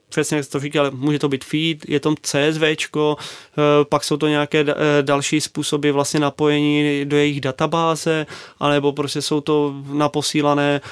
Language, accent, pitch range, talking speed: Czech, native, 140-150 Hz, 155 wpm